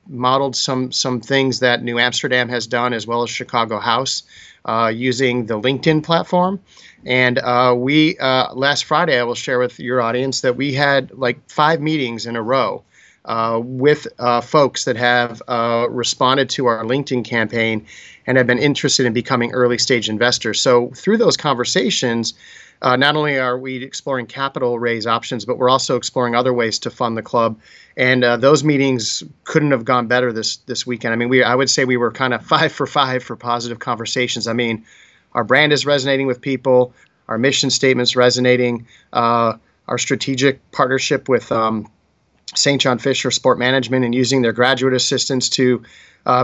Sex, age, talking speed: male, 40-59, 180 wpm